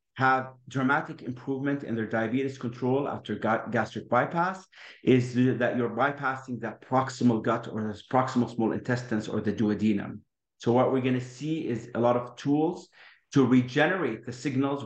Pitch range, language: 115-140 Hz, English